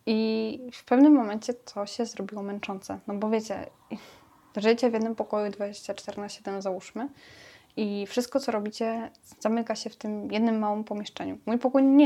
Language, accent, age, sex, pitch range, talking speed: Polish, native, 10-29, female, 195-225 Hz, 165 wpm